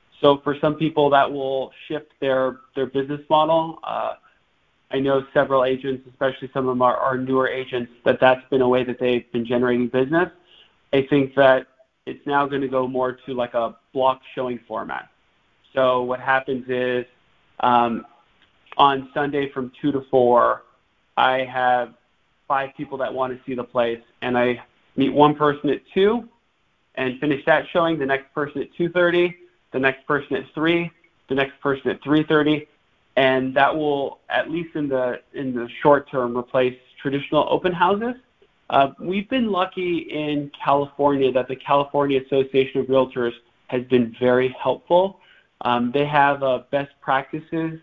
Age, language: 20-39, English